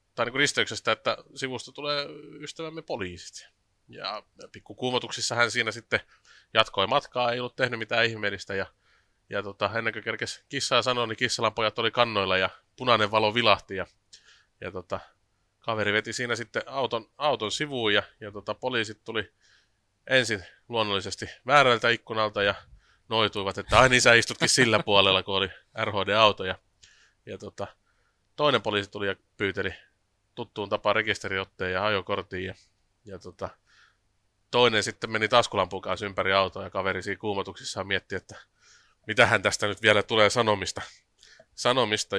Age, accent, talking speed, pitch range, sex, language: 30-49, native, 145 wpm, 100-125 Hz, male, Finnish